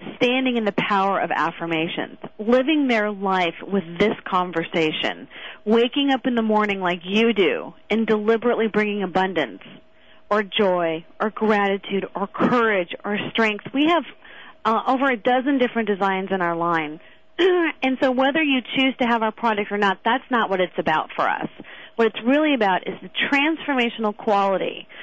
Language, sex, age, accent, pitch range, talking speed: English, female, 40-59, American, 195-260 Hz, 165 wpm